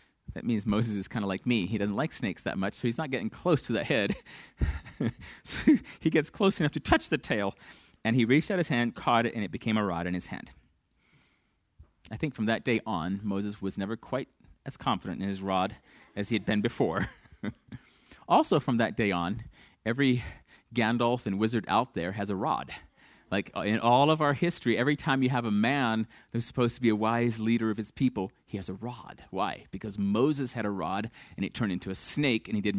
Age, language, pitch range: 30-49, English, 105-130 Hz